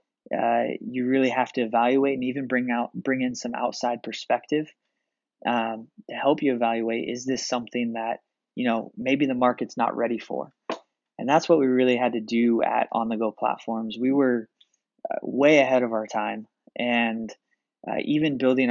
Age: 20-39